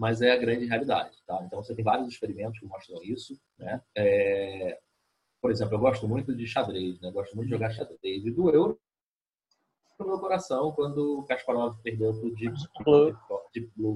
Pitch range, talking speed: 110-160 Hz, 170 wpm